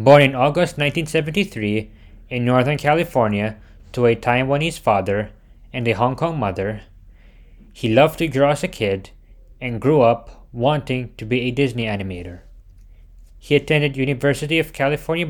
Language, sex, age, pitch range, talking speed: English, male, 20-39, 105-140 Hz, 145 wpm